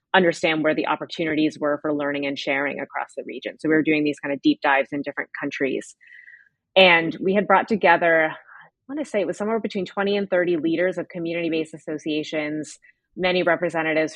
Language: English